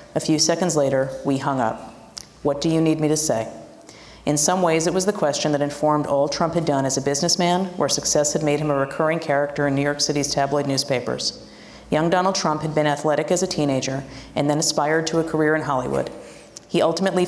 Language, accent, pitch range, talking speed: English, American, 140-160 Hz, 220 wpm